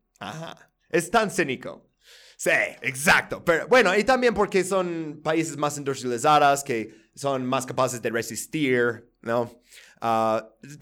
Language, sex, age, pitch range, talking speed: Spanish, male, 30-49, 130-175 Hz, 130 wpm